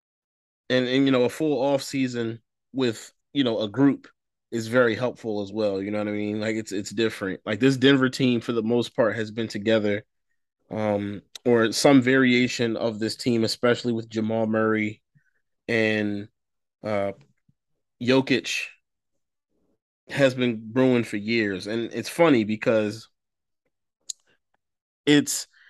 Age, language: 20-39, English